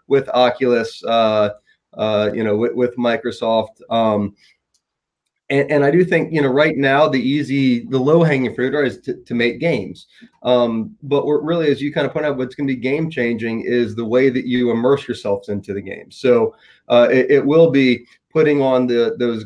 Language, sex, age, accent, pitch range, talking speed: English, male, 30-49, American, 120-140 Hz, 195 wpm